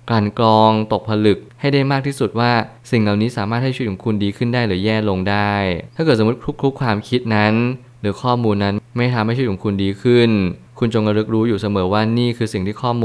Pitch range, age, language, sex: 100-120 Hz, 20-39, Thai, male